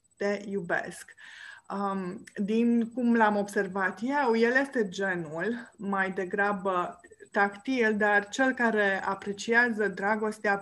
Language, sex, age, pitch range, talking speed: Romanian, female, 20-39, 190-225 Hz, 100 wpm